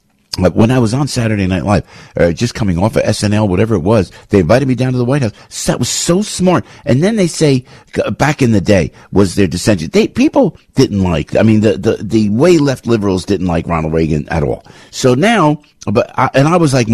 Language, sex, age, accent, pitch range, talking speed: English, male, 50-69, American, 95-130 Hz, 240 wpm